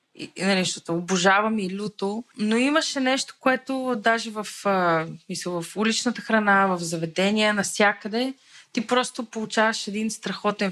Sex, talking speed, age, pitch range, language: female, 130 wpm, 20-39, 180-225 Hz, Bulgarian